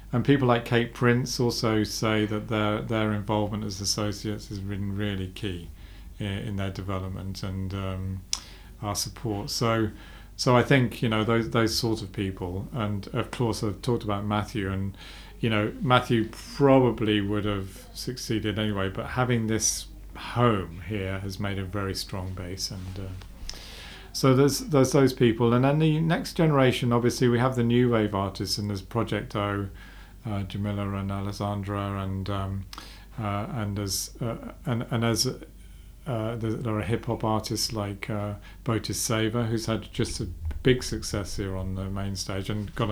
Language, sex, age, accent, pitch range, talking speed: English, male, 40-59, British, 95-115 Hz, 170 wpm